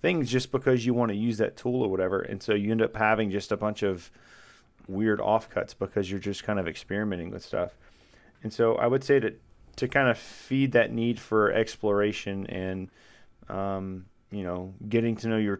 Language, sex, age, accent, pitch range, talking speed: English, male, 30-49, American, 100-120 Hz, 205 wpm